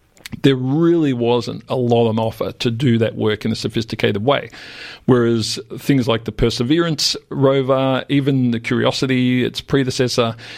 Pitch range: 115-135 Hz